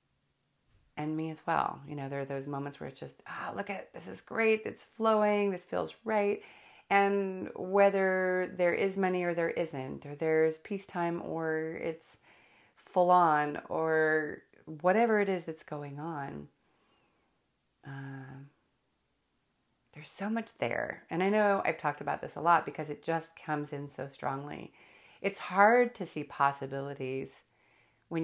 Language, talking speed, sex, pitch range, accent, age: English, 155 wpm, female, 145-170 Hz, American, 30-49